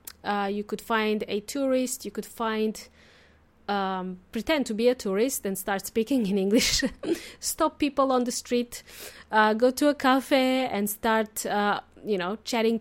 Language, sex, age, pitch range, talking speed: English, female, 30-49, 215-270 Hz, 170 wpm